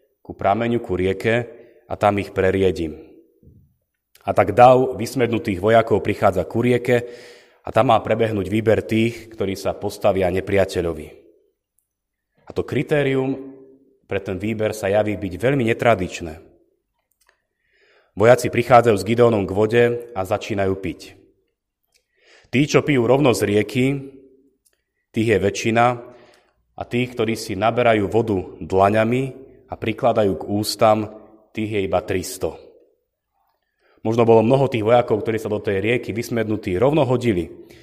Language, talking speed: Slovak, 130 wpm